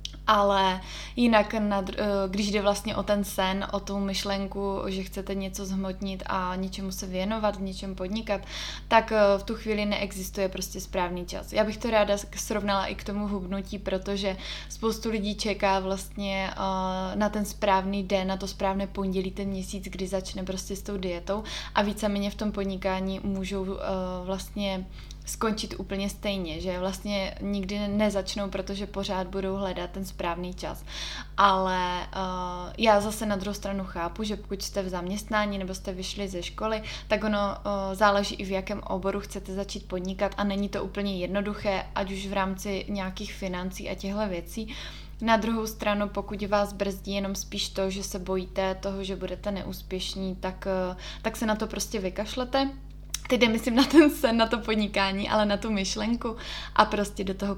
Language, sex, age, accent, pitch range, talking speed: Czech, female, 20-39, native, 190-210 Hz, 165 wpm